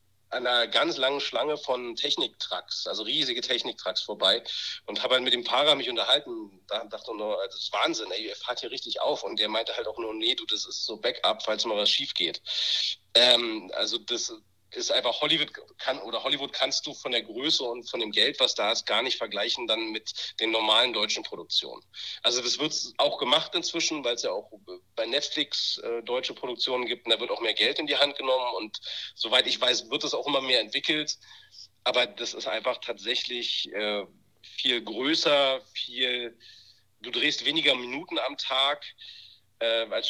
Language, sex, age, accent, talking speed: German, male, 40-59, German, 195 wpm